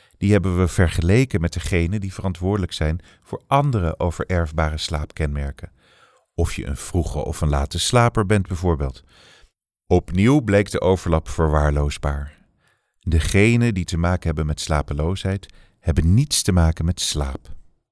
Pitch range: 80-105 Hz